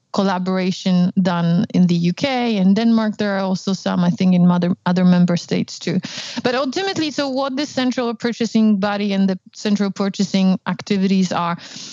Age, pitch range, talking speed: 30-49, 190-225 Hz, 165 wpm